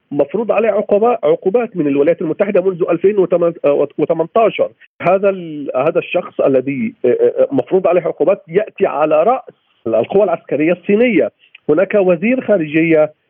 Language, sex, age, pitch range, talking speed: Arabic, male, 50-69, 145-200 Hz, 115 wpm